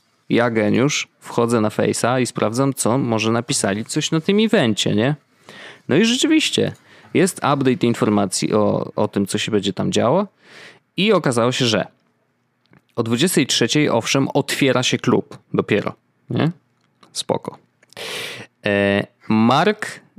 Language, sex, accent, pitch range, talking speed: Polish, male, native, 110-150 Hz, 130 wpm